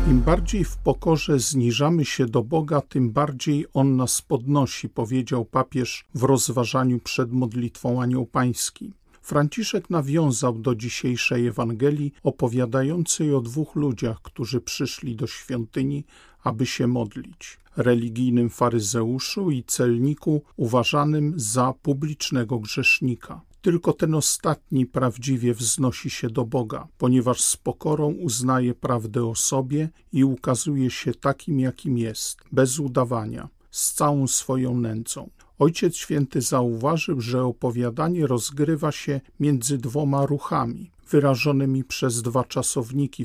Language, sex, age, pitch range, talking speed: Polish, male, 50-69, 125-145 Hz, 120 wpm